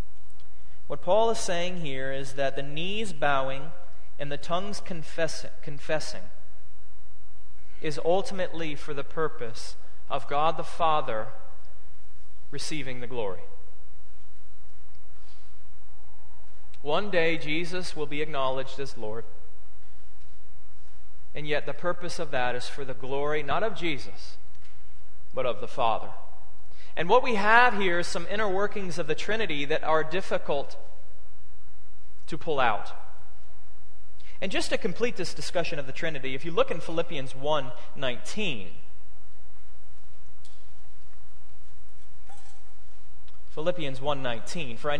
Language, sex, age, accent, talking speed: English, male, 30-49, American, 115 wpm